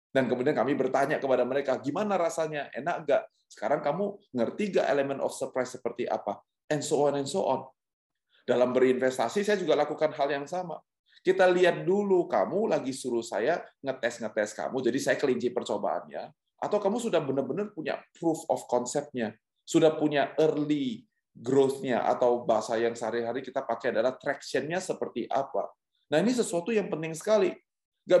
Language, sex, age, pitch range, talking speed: Indonesian, male, 20-39, 120-175 Hz, 160 wpm